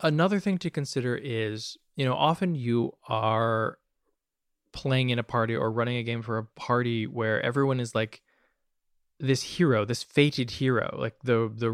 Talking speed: 170 wpm